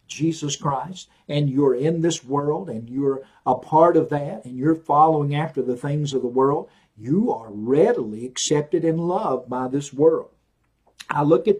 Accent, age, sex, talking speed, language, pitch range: American, 50-69, male, 175 wpm, English, 130-160 Hz